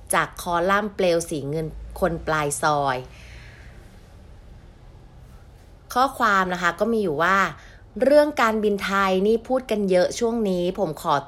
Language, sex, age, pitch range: Thai, female, 30-49, 165-215 Hz